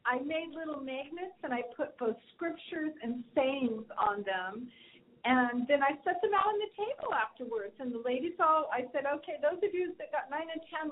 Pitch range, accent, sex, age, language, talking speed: 250-320 Hz, American, female, 40-59, English, 210 wpm